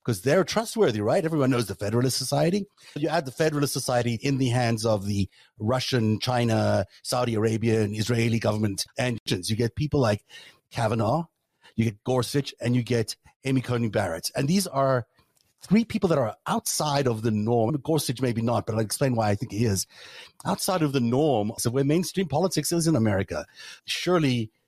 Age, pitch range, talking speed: 30-49, 105-145 Hz, 185 wpm